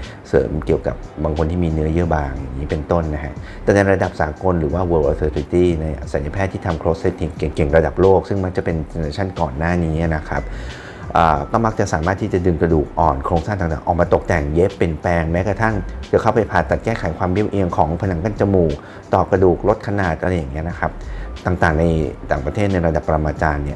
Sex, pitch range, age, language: male, 75-95 Hz, 30-49, Thai